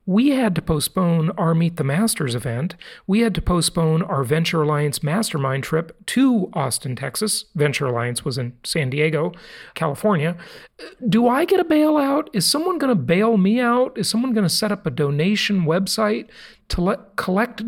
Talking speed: 165 wpm